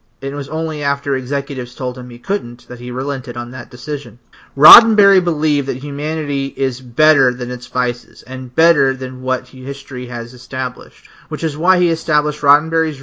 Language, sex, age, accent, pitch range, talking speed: English, male, 30-49, American, 130-160 Hz, 170 wpm